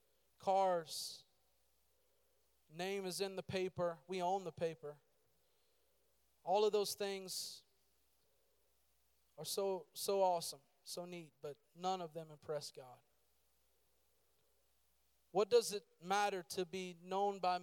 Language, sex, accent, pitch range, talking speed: English, male, American, 175-210 Hz, 115 wpm